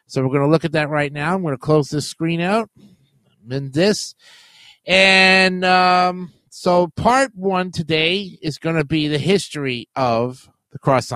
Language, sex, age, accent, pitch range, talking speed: English, male, 50-69, American, 150-210 Hz, 175 wpm